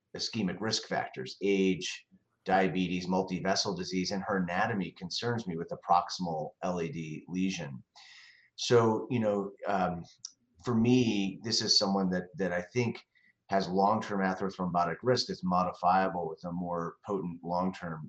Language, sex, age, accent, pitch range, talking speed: English, male, 30-49, American, 90-100 Hz, 135 wpm